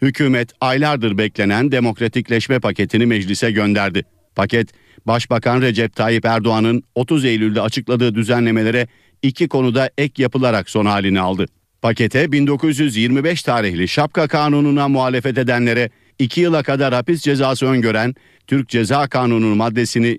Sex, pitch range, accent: male, 110-135 Hz, native